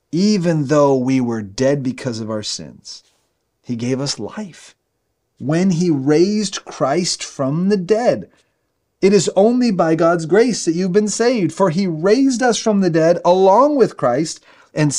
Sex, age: male, 30-49